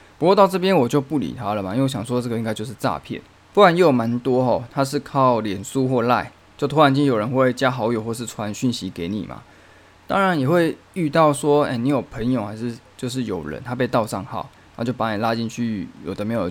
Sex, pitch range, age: male, 110-140 Hz, 20-39